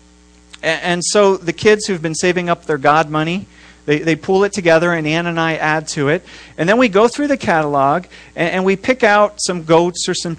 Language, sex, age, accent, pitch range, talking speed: English, male, 40-59, American, 115-180 Hz, 225 wpm